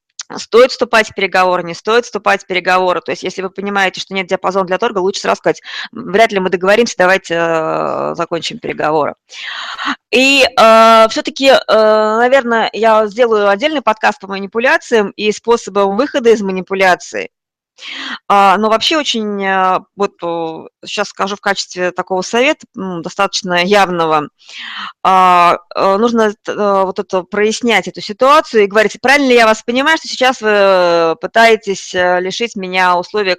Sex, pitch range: female, 185-230 Hz